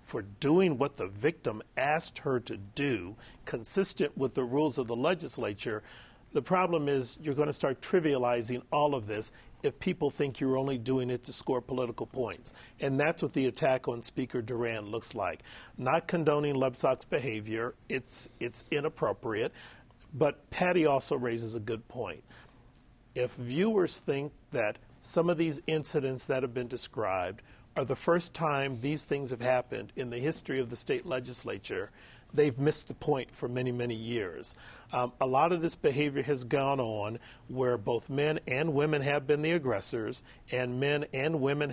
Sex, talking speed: male, 170 wpm